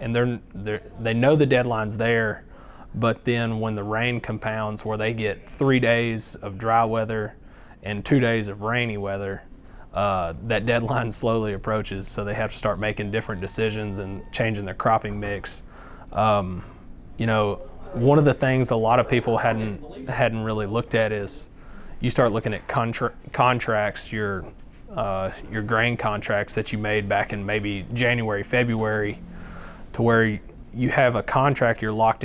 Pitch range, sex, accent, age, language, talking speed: 105-115 Hz, male, American, 20-39, English, 165 wpm